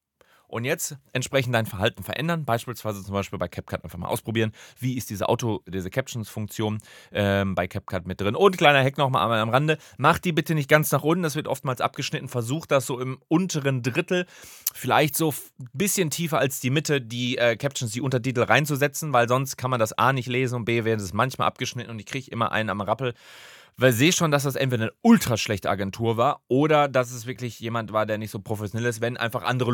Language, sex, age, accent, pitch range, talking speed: German, male, 30-49, German, 115-150 Hz, 220 wpm